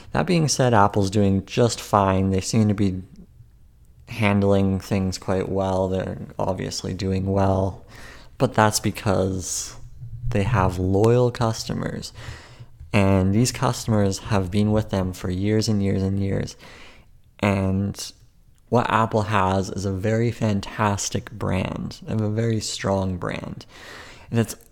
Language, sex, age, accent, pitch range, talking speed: English, male, 30-49, American, 95-120 Hz, 135 wpm